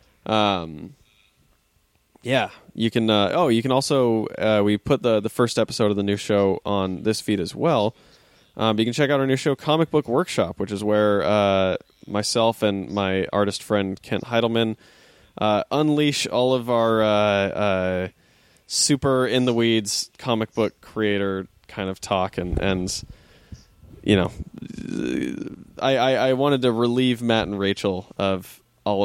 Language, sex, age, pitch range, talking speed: English, male, 20-39, 100-130 Hz, 165 wpm